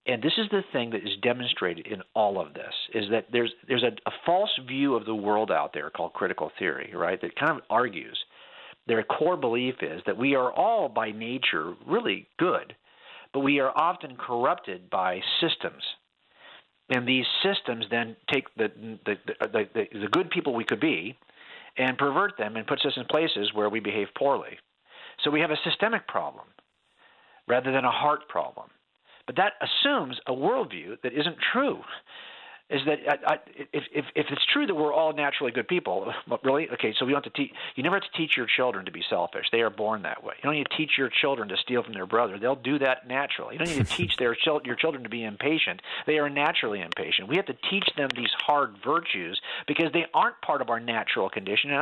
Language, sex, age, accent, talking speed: English, male, 50-69, American, 215 wpm